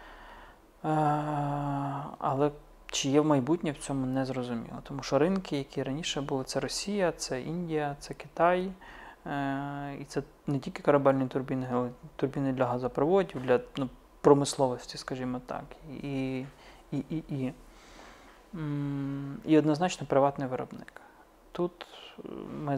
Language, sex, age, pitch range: Russian, male, 30-49, 130-150 Hz